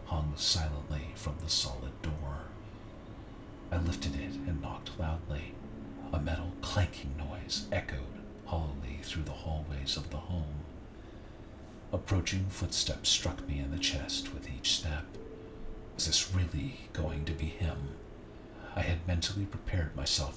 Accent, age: American, 50-69